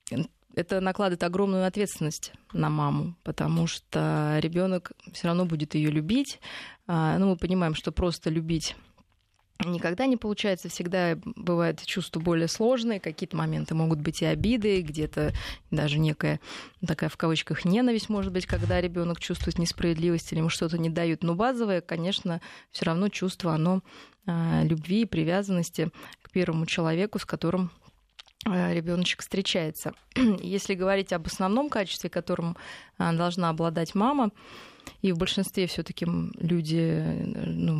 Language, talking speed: Russian, 135 wpm